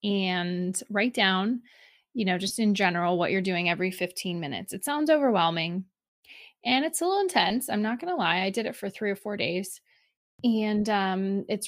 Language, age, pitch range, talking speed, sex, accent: English, 20-39, 185-230 Hz, 195 wpm, female, American